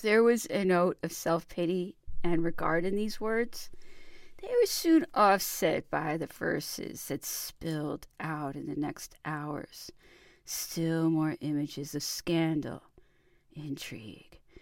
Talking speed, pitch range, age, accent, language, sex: 125 wpm, 155-210 Hz, 40-59, American, English, female